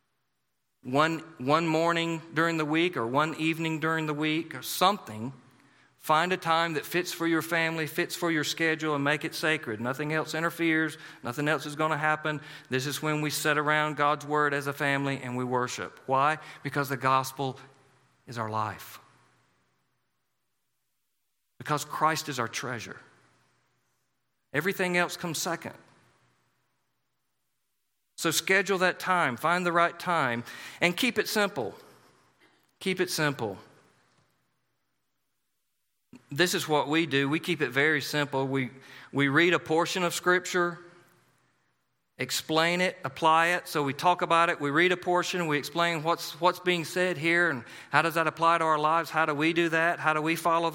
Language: English